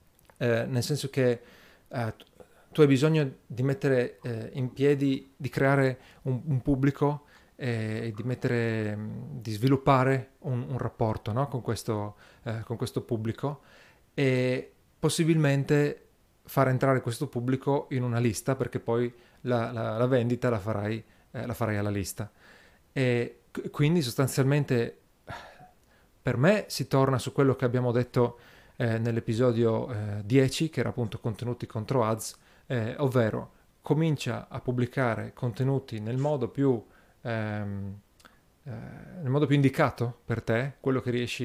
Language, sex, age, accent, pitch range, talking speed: Italian, male, 40-59, native, 115-135 Hz, 135 wpm